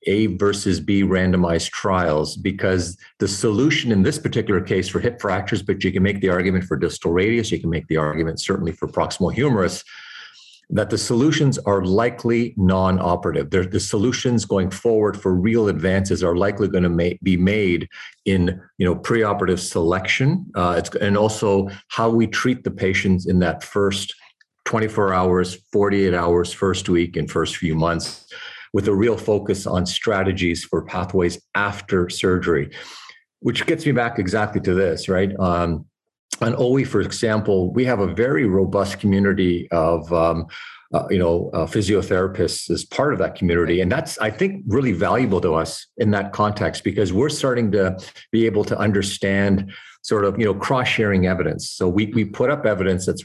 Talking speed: 170 wpm